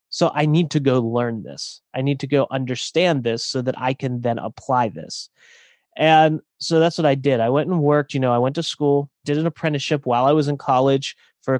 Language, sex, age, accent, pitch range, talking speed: English, male, 30-49, American, 125-160 Hz, 235 wpm